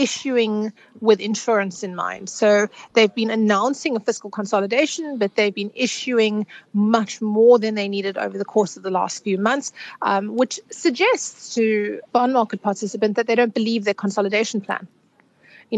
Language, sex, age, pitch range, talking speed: English, female, 30-49, 200-235 Hz, 165 wpm